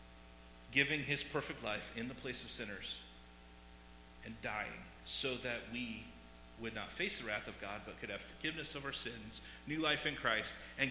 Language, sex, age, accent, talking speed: English, male, 40-59, American, 180 wpm